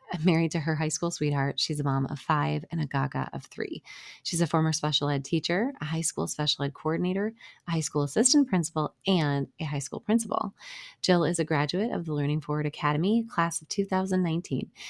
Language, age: English, 30-49